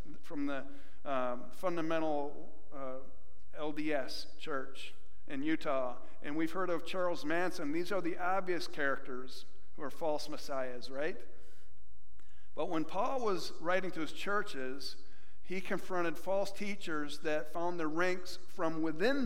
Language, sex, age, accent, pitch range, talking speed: English, male, 50-69, American, 145-190 Hz, 135 wpm